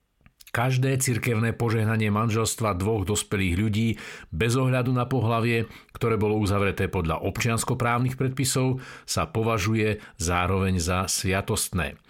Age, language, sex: 50-69, Slovak, male